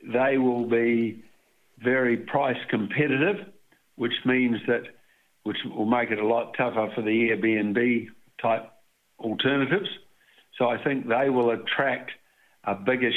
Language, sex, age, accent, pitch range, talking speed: English, male, 60-79, Australian, 110-125 Hz, 130 wpm